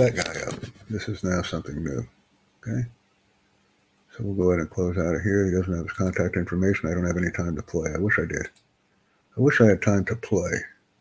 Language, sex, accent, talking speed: English, male, American, 230 wpm